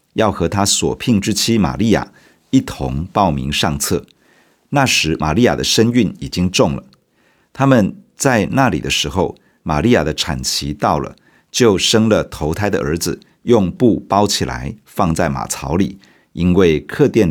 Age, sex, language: 50-69, male, Chinese